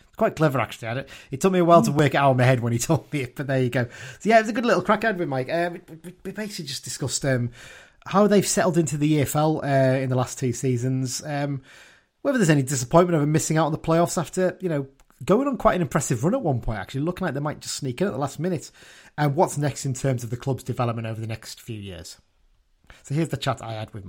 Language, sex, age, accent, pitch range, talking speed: English, male, 30-49, British, 115-150 Hz, 275 wpm